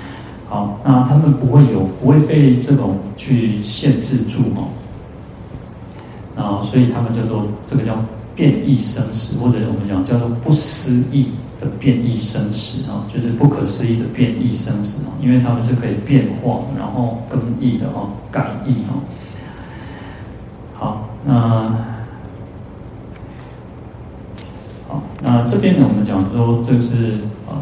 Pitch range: 110-125 Hz